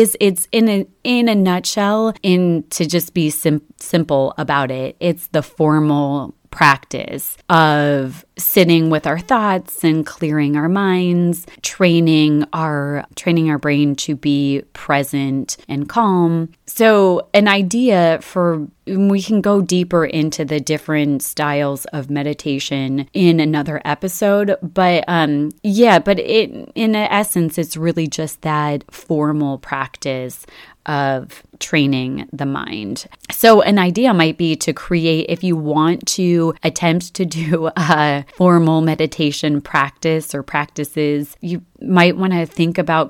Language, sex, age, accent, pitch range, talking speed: English, female, 30-49, American, 145-180 Hz, 135 wpm